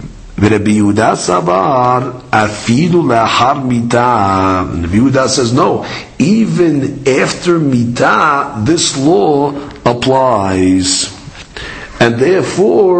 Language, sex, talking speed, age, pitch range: English, male, 60 wpm, 50-69, 115-155 Hz